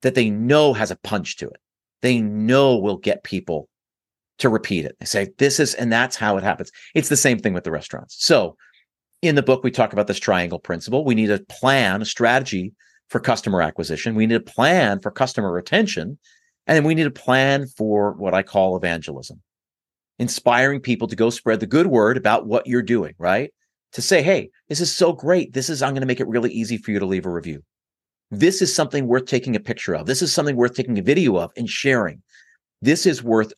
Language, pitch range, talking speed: English, 105-140 Hz, 220 wpm